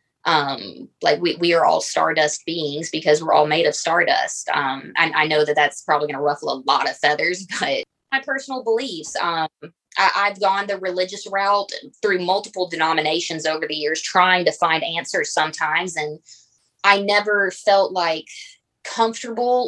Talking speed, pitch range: 170 wpm, 155-195 Hz